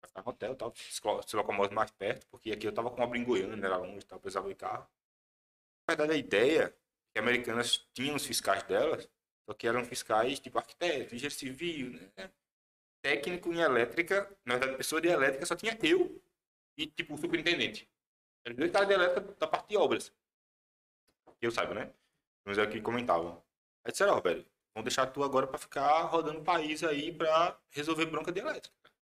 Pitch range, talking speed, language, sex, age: 115-170 Hz, 175 wpm, Portuguese, male, 20-39